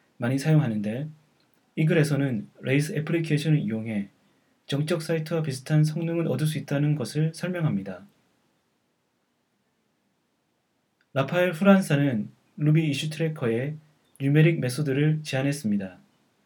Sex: male